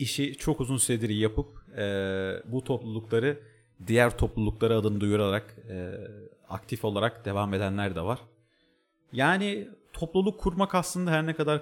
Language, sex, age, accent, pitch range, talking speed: Turkish, male, 40-59, native, 105-145 Hz, 135 wpm